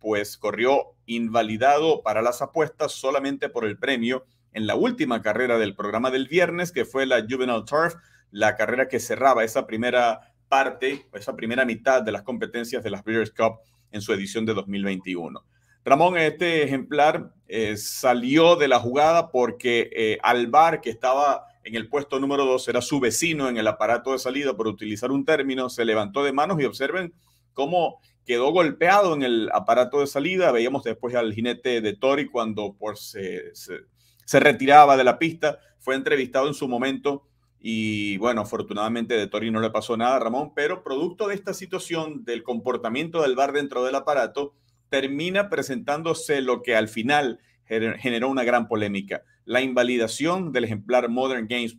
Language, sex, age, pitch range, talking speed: English, male, 40-59, 115-140 Hz, 170 wpm